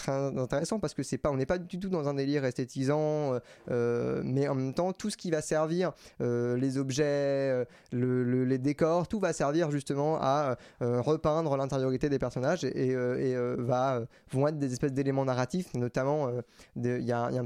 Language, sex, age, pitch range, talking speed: French, male, 20-39, 125-145 Hz, 205 wpm